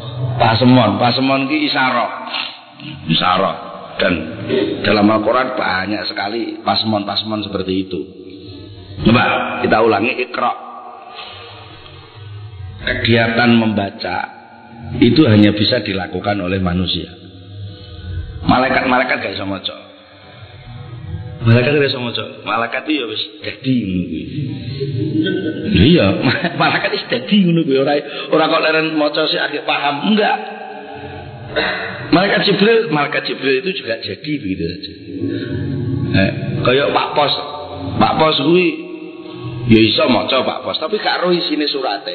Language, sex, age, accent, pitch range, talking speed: Indonesian, male, 50-69, native, 105-155 Hz, 110 wpm